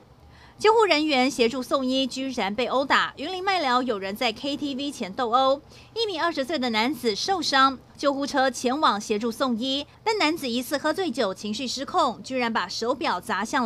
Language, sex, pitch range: Chinese, female, 235-305 Hz